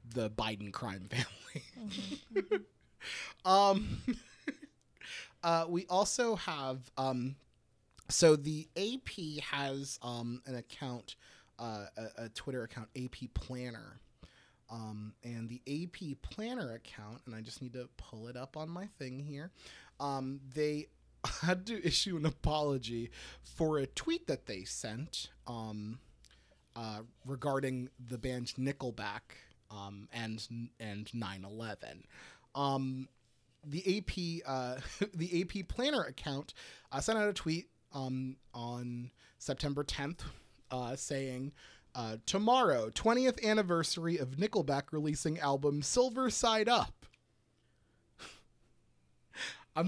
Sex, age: male, 30-49